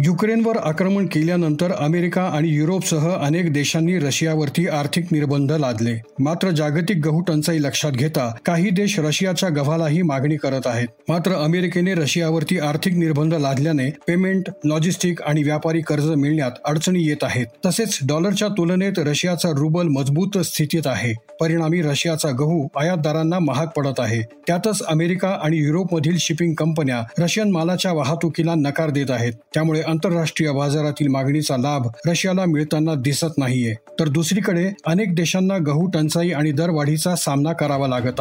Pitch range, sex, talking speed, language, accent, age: 145-175 Hz, male, 135 wpm, Marathi, native, 40-59